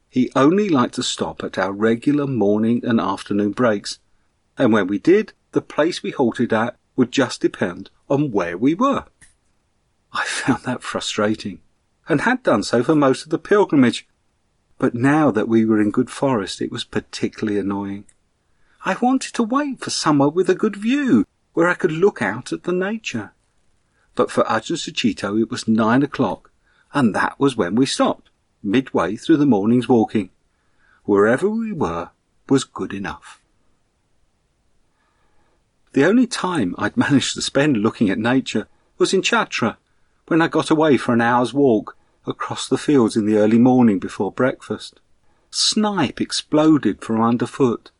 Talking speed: 165 wpm